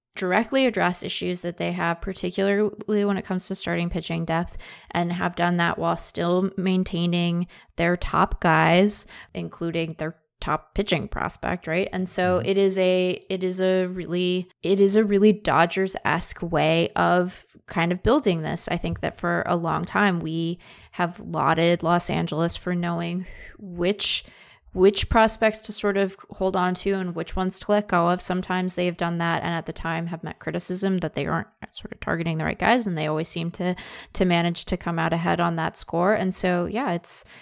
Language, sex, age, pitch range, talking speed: English, female, 20-39, 170-190 Hz, 190 wpm